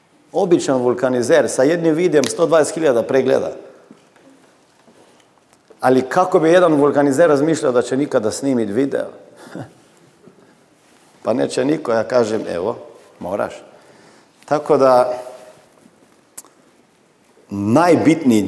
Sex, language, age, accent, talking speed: male, Croatian, 50-69, native, 95 wpm